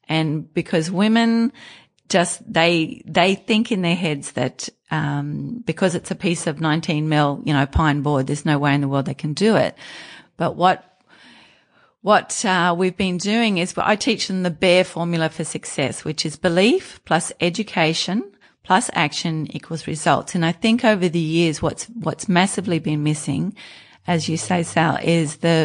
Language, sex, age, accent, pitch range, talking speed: English, female, 40-59, Australian, 150-195 Hz, 180 wpm